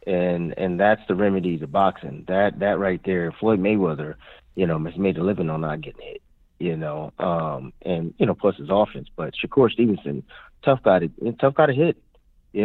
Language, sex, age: English, male, 30-49